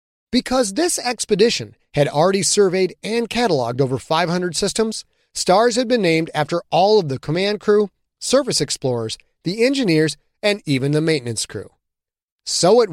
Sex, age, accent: male, 30-49, American